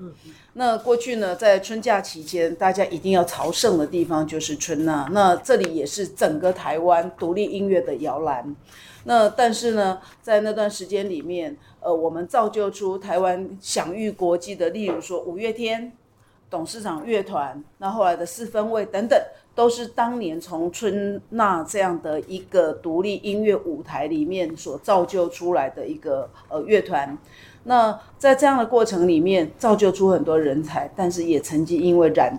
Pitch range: 165-215 Hz